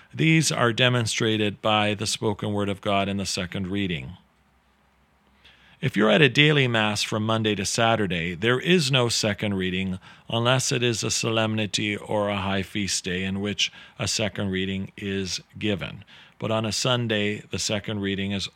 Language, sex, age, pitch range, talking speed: English, male, 40-59, 100-120 Hz, 170 wpm